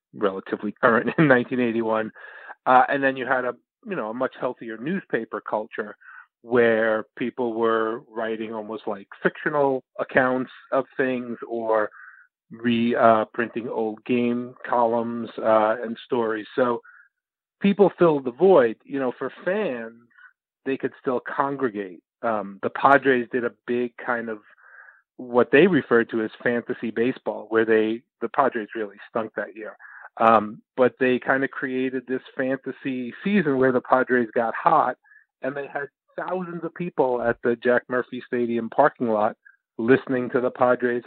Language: English